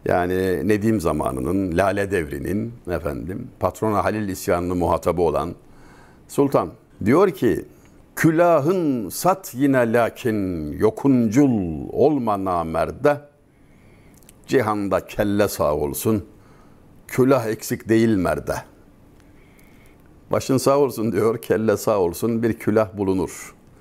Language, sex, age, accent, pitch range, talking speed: Turkish, male, 60-79, native, 100-130 Hz, 100 wpm